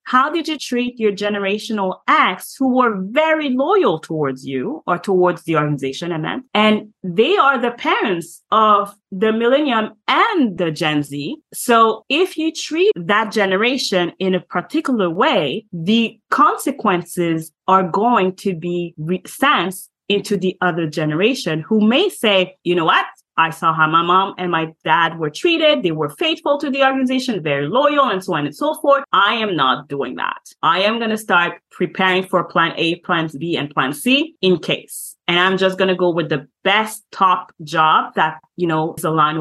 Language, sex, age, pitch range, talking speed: English, female, 30-49, 175-240 Hz, 180 wpm